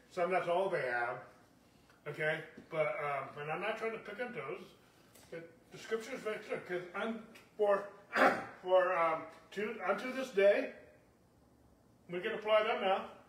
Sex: male